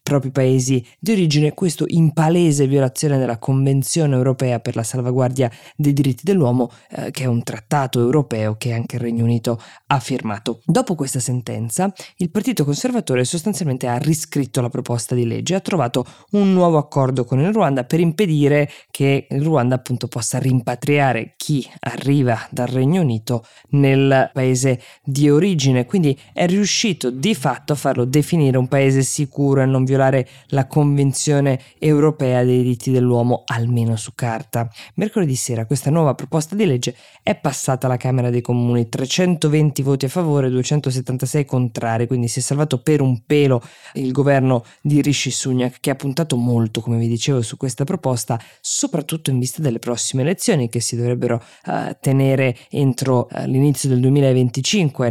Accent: native